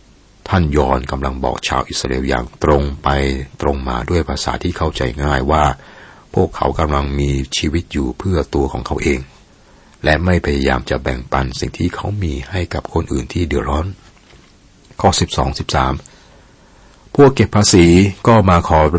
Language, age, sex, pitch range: Thai, 60-79, male, 70-90 Hz